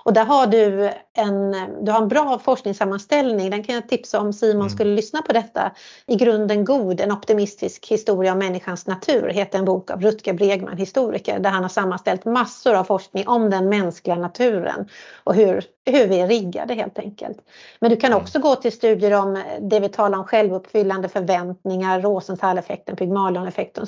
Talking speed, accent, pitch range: 175 wpm, native, 195-245 Hz